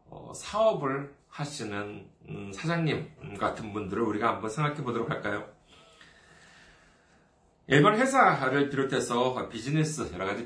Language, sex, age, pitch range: Korean, male, 40-59, 115-180 Hz